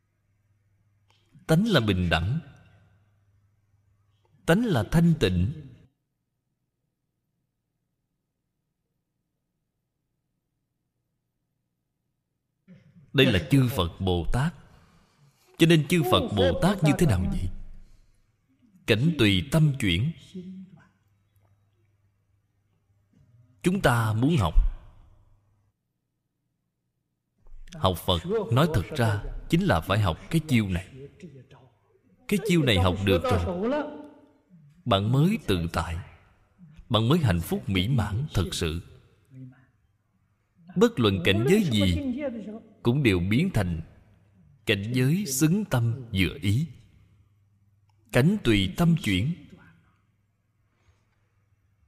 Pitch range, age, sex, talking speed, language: 100-145 Hz, 20-39, male, 95 wpm, Vietnamese